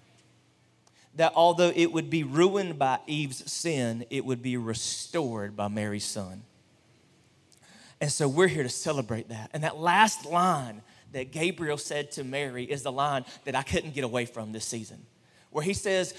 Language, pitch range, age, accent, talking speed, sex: English, 130-195 Hz, 30-49, American, 170 wpm, male